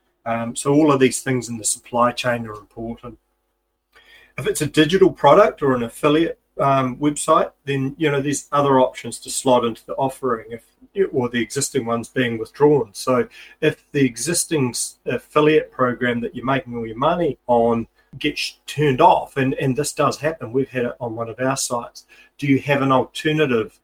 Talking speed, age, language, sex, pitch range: 185 wpm, 40-59, English, male, 120-140 Hz